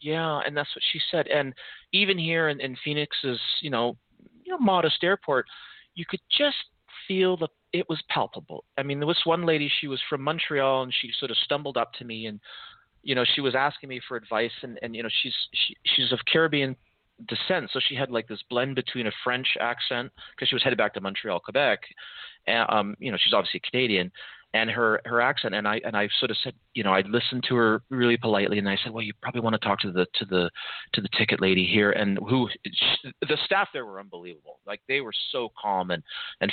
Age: 30-49